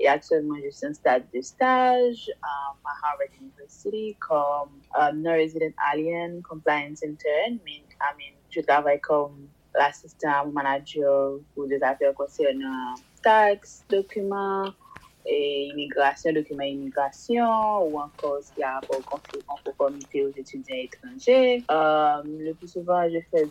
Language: French